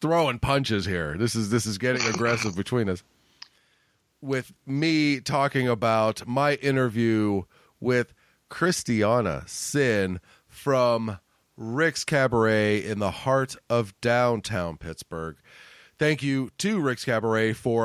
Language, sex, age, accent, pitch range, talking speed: English, male, 40-59, American, 110-140 Hz, 120 wpm